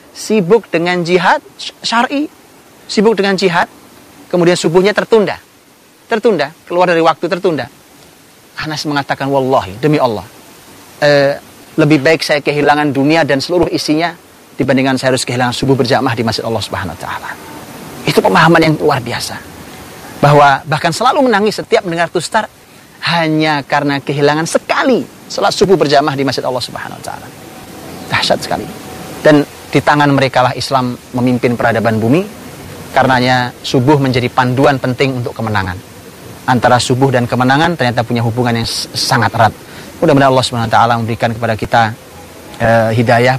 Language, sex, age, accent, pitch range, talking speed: Indonesian, male, 30-49, native, 120-150 Hz, 140 wpm